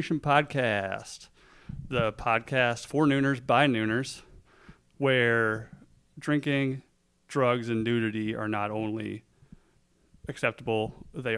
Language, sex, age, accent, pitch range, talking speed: English, male, 30-49, American, 115-140 Hz, 90 wpm